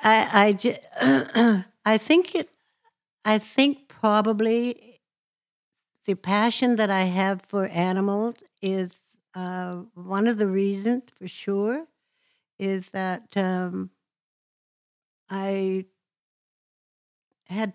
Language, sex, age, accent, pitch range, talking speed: English, female, 60-79, American, 180-215 Hz, 100 wpm